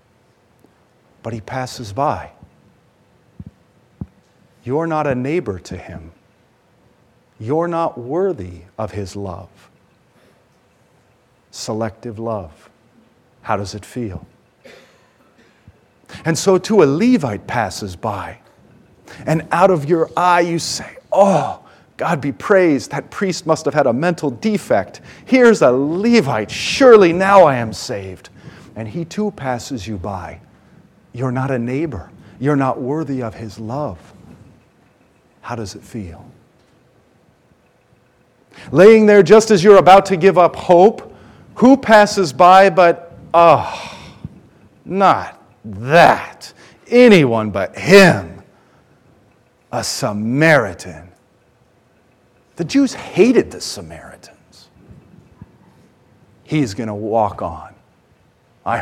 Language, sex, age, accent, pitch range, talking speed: English, male, 40-59, American, 110-170 Hz, 110 wpm